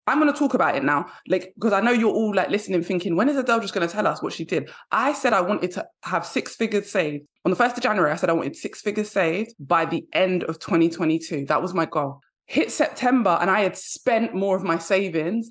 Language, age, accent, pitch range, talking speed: English, 20-39, British, 170-225 Hz, 260 wpm